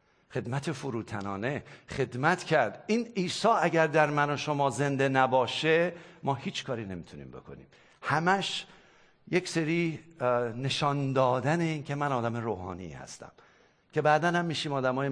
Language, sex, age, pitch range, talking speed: English, male, 50-69, 135-185 Hz, 130 wpm